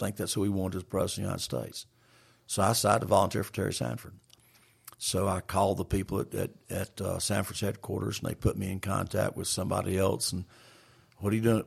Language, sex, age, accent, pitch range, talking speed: English, male, 50-69, American, 95-115 Hz, 225 wpm